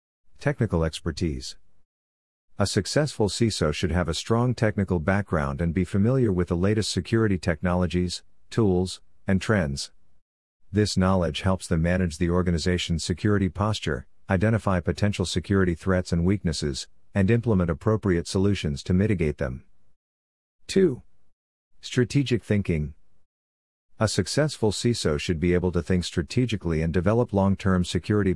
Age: 50-69